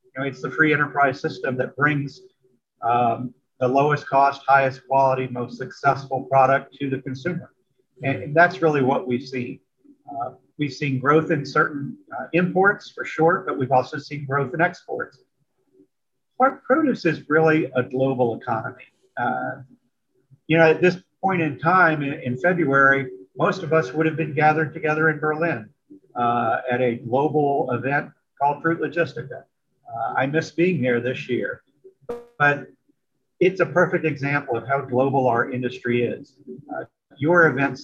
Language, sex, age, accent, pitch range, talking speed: English, male, 50-69, American, 130-160 Hz, 160 wpm